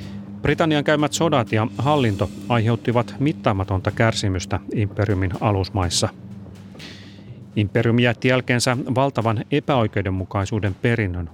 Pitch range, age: 100-130 Hz, 30-49